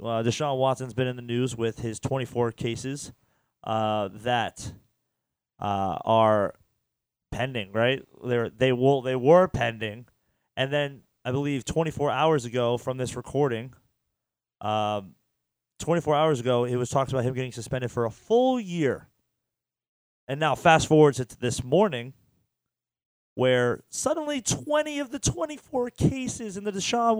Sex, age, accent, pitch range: male, 30-49, American, 115-145 Hz